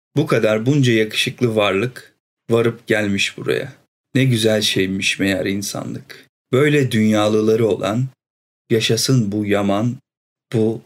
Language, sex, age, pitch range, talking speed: Turkish, male, 40-59, 110-130 Hz, 110 wpm